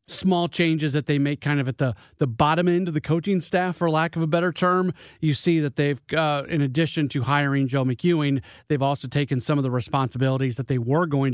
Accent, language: American, English